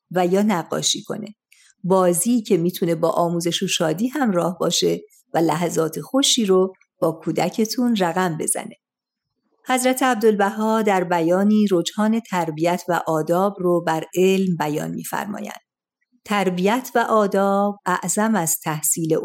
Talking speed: 130 wpm